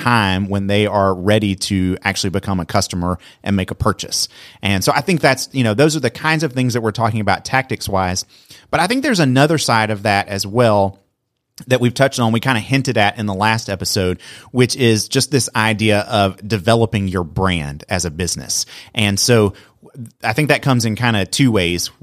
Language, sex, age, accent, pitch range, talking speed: English, male, 30-49, American, 100-125 Hz, 215 wpm